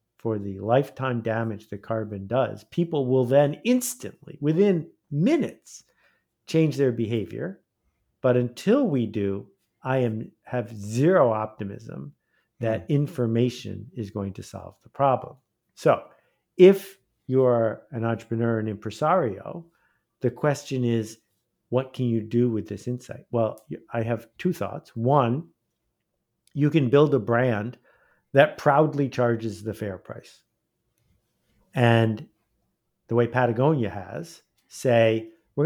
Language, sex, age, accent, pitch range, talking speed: English, male, 50-69, American, 110-140 Hz, 125 wpm